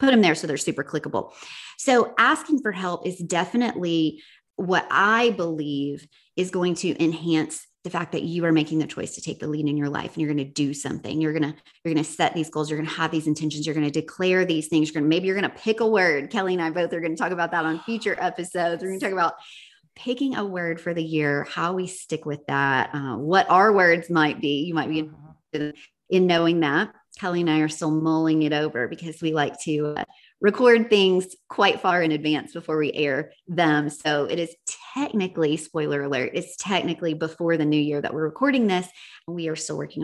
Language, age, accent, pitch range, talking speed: English, 30-49, American, 155-210 Hz, 235 wpm